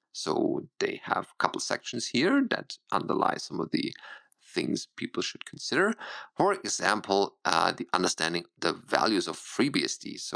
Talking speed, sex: 150 wpm, male